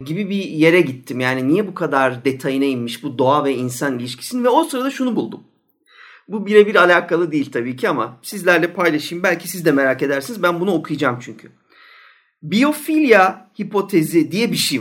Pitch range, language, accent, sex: 135-205 Hz, Turkish, native, male